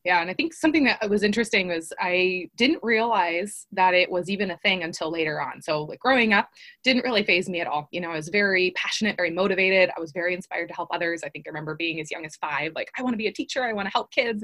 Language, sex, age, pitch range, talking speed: English, female, 20-39, 175-205 Hz, 280 wpm